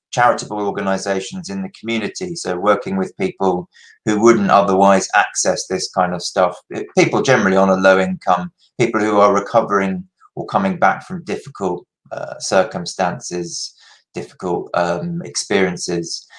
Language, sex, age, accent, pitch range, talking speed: English, male, 30-49, British, 105-135 Hz, 135 wpm